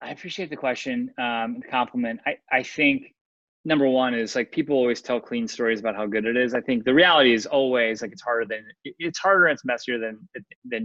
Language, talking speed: English, 220 wpm